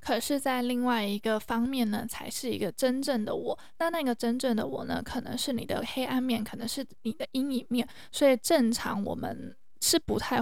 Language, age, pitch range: Chinese, 20-39, 215-245 Hz